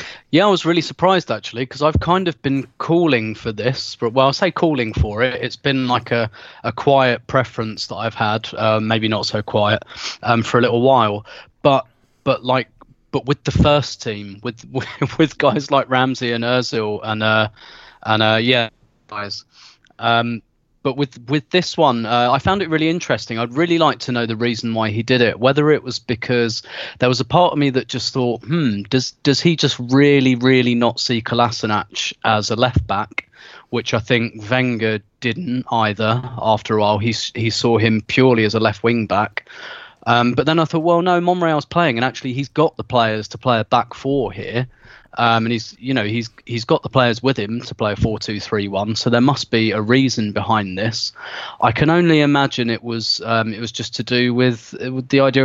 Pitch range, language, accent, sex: 110-135 Hz, English, British, male